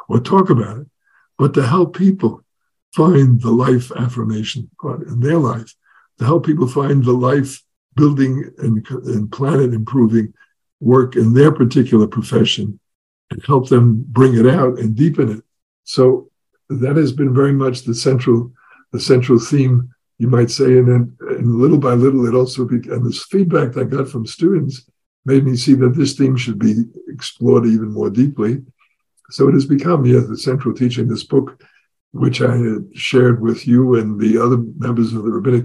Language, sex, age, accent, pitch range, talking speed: English, male, 60-79, American, 120-140 Hz, 175 wpm